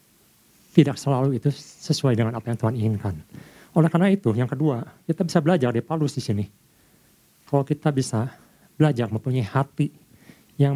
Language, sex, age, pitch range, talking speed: Indonesian, male, 50-69, 120-165 Hz, 155 wpm